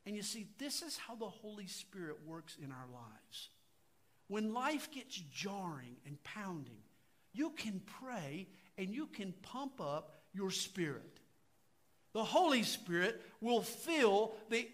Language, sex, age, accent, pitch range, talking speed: English, male, 50-69, American, 155-260 Hz, 145 wpm